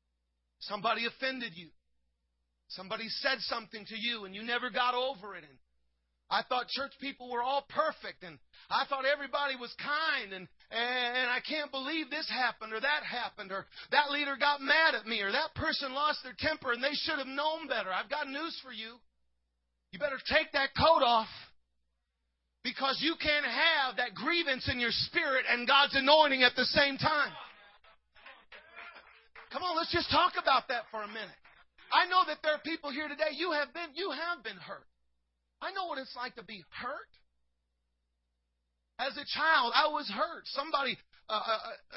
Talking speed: 175 wpm